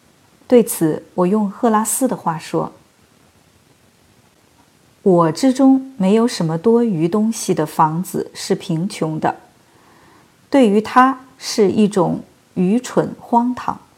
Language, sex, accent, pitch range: Chinese, female, native, 175-235 Hz